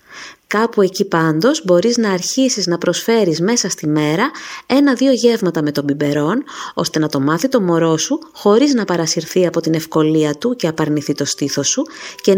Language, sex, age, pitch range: Greek, female, 20-39, 150-225 Hz